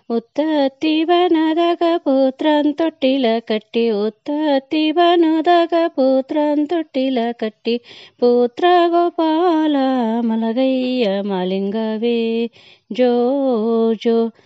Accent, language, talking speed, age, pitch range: Indian, English, 60 wpm, 30-49, 225-305 Hz